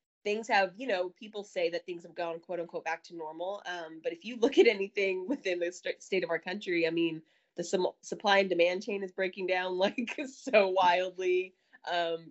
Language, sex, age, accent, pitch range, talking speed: English, female, 20-39, American, 170-205 Hz, 215 wpm